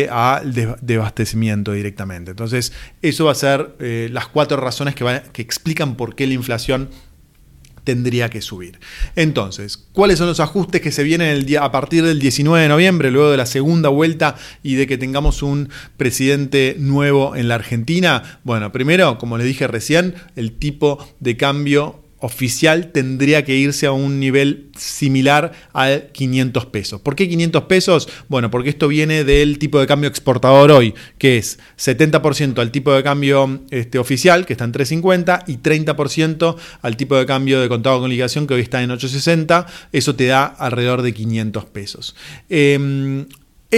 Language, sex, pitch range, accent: Spanish, male, 125-155 Hz, Argentinian